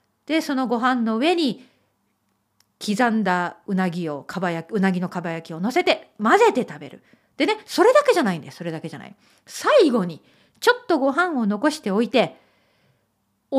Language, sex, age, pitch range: Japanese, female, 40-59, 200-305 Hz